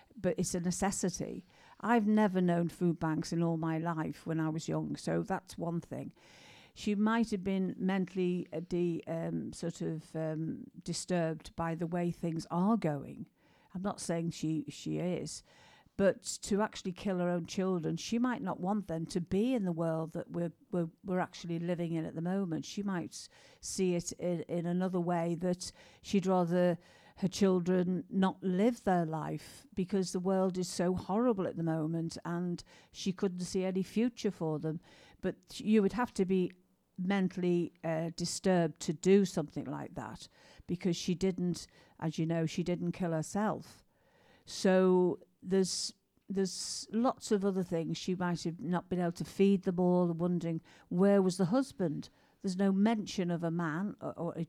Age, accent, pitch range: 50-69, British, 165-195 Hz